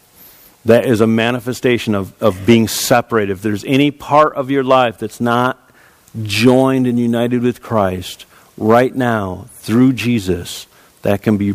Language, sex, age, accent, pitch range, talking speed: English, male, 50-69, American, 105-130 Hz, 150 wpm